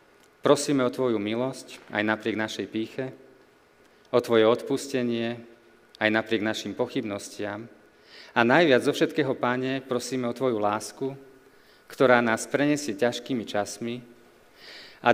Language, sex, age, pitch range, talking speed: Slovak, male, 40-59, 110-135 Hz, 120 wpm